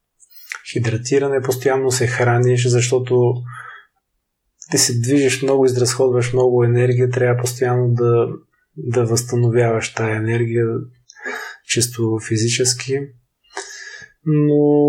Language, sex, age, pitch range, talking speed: Bulgarian, male, 20-39, 120-130 Hz, 90 wpm